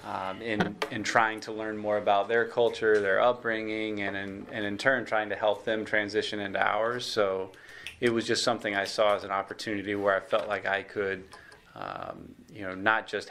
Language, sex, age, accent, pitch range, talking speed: English, male, 20-39, American, 95-110 Hz, 200 wpm